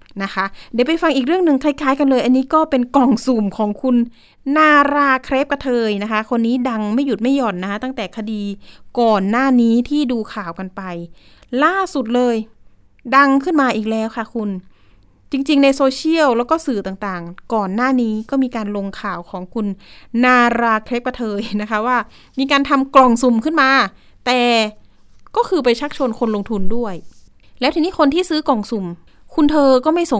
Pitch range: 210-270 Hz